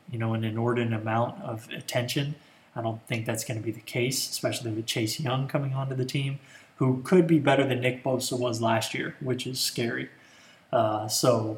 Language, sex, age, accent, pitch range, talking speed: English, male, 20-39, American, 115-130 Hz, 200 wpm